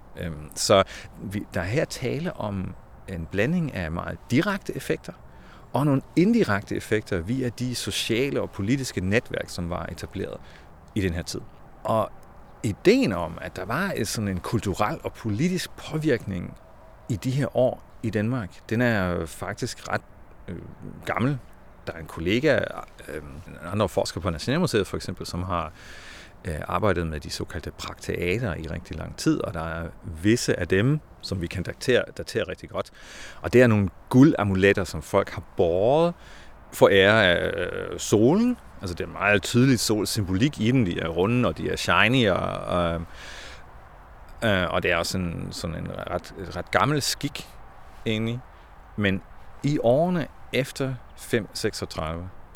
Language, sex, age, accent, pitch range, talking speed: Danish, male, 40-59, native, 85-125 Hz, 155 wpm